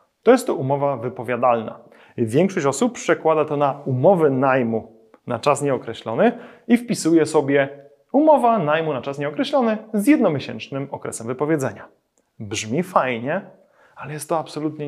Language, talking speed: Polish, 135 wpm